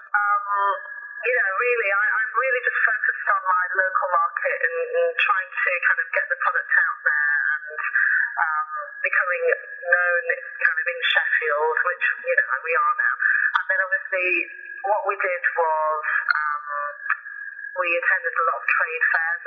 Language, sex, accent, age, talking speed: English, female, British, 30-49, 155 wpm